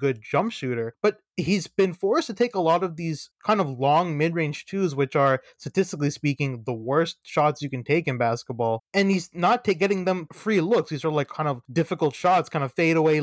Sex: male